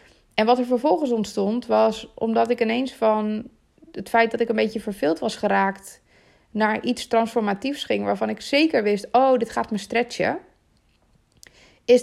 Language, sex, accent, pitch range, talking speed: Dutch, female, Dutch, 200-245 Hz, 165 wpm